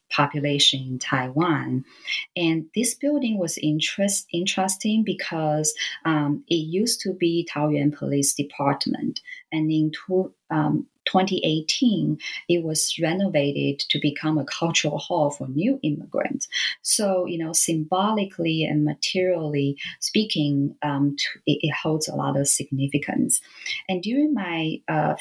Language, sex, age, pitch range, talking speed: English, female, 30-49, 140-175 Hz, 125 wpm